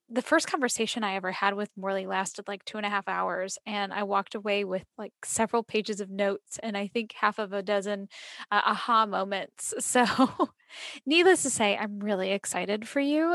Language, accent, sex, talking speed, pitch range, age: English, American, female, 200 wpm, 200-240 Hz, 10-29